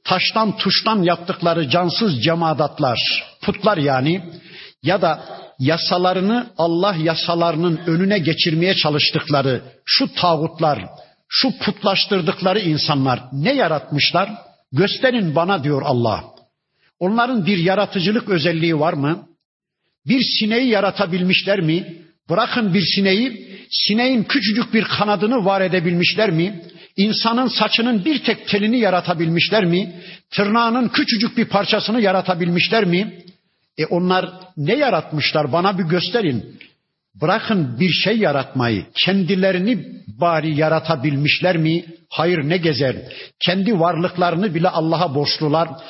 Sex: male